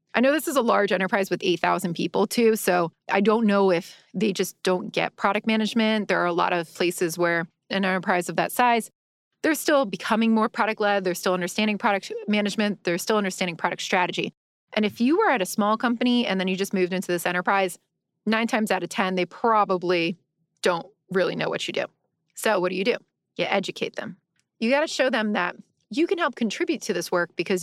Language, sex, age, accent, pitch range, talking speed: English, female, 30-49, American, 180-220 Hz, 220 wpm